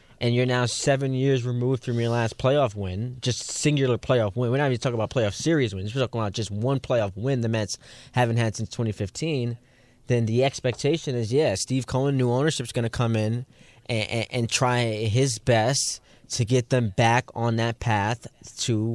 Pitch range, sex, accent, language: 115-135 Hz, male, American, English